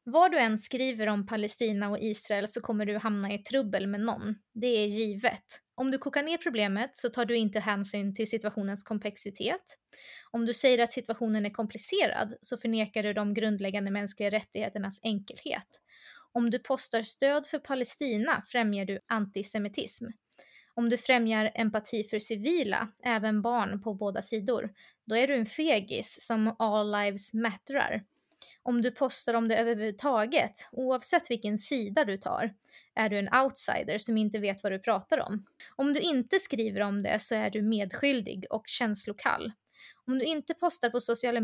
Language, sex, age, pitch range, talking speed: Swedish, female, 20-39, 210-250 Hz, 170 wpm